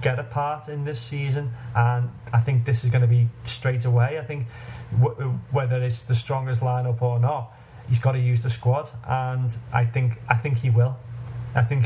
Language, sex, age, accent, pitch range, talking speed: English, male, 20-39, British, 120-130 Hz, 205 wpm